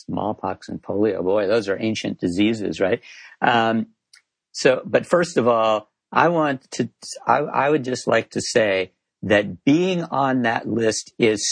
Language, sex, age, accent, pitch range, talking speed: English, male, 50-69, American, 105-130 Hz, 160 wpm